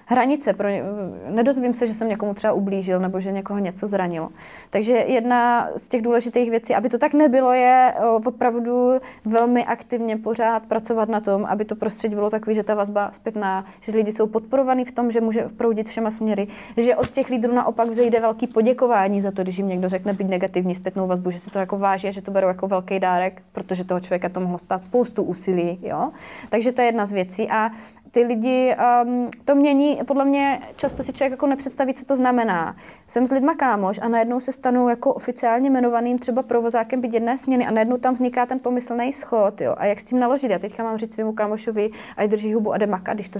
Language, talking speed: Czech, 215 wpm